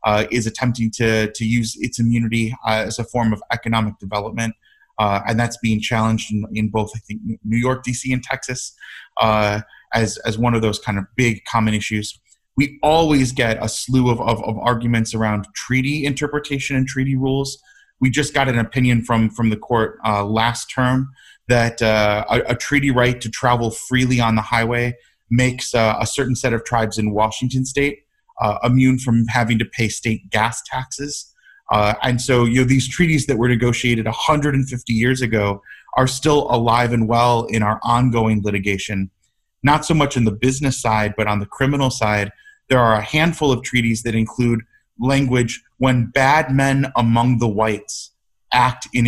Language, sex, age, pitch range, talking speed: English, male, 30-49, 110-130 Hz, 185 wpm